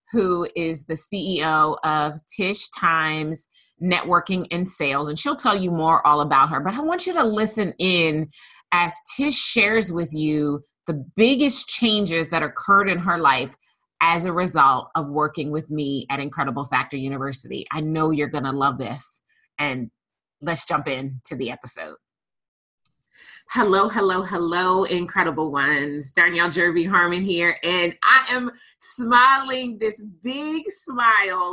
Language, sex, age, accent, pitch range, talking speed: English, female, 20-39, American, 155-205 Hz, 150 wpm